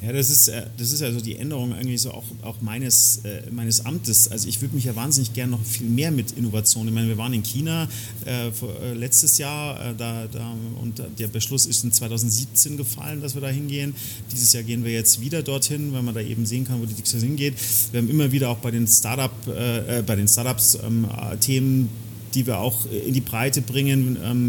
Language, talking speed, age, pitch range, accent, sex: German, 225 wpm, 30-49, 115-130 Hz, German, male